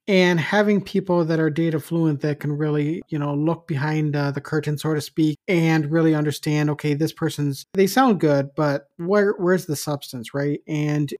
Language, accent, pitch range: English, American, 150-170 Hz